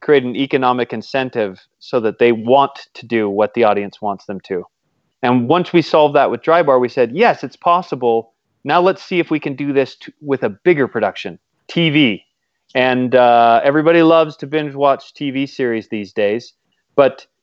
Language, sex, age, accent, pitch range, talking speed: English, male, 30-49, American, 115-150 Hz, 185 wpm